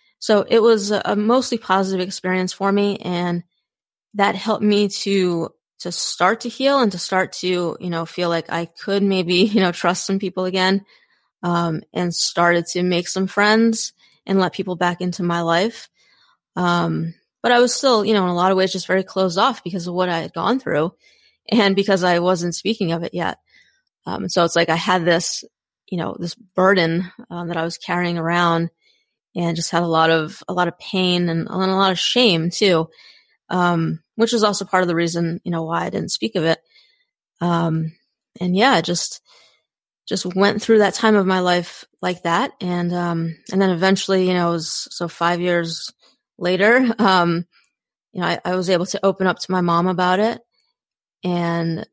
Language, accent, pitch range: English, American, 170-200 Hz